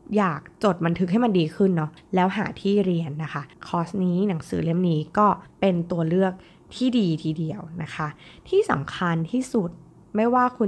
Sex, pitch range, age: female, 165-205 Hz, 20-39